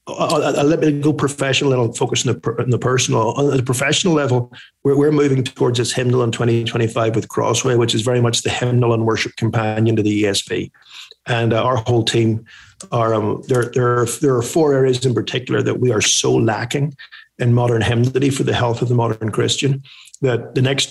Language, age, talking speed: English, 50-69, 210 wpm